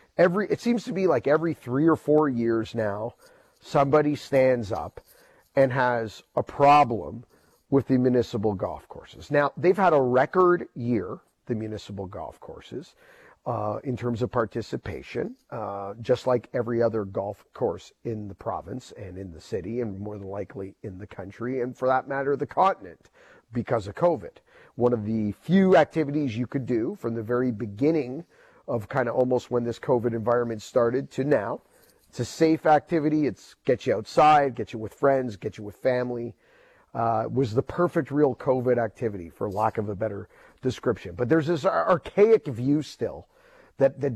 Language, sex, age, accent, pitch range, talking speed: English, male, 40-59, American, 115-145 Hz, 175 wpm